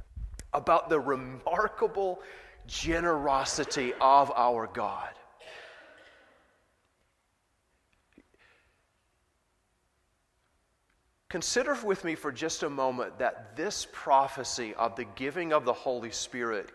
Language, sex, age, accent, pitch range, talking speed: English, male, 30-49, American, 135-175 Hz, 85 wpm